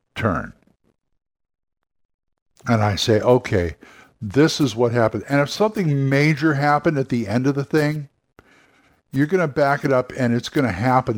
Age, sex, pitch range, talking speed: 60-79, male, 115-150 Hz, 165 wpm